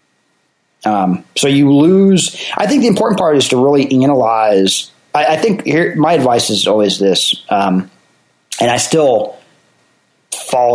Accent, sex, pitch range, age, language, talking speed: American, male, 110-145 Hz, 30-49, English, 145 wpm